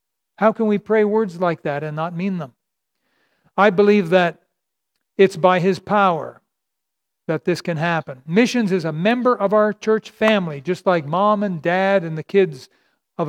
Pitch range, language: 180-225 Hz, English